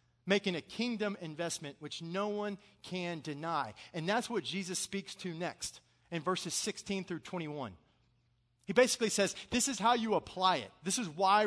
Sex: male